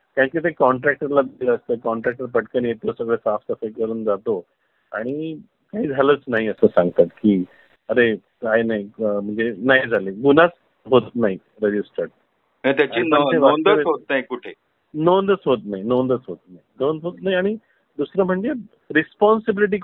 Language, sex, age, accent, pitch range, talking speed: Marathi, male, 50-69, native, 115-160 Hz, 125 wpm